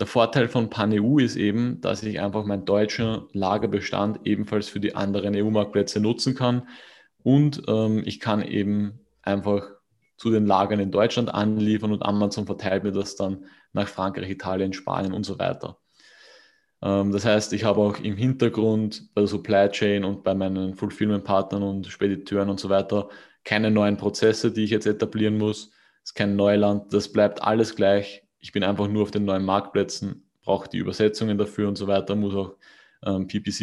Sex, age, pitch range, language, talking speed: male, 20-39, 100-110 Hz, German, 180 wpm